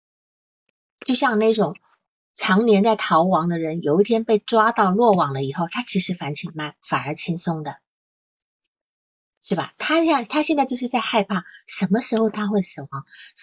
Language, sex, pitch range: Chinese, female, 180-250 Hz